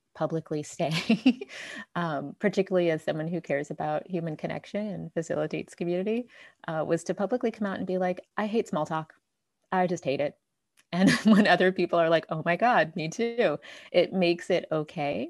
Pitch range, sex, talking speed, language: 155-190 Hz, female, 180 wpm, English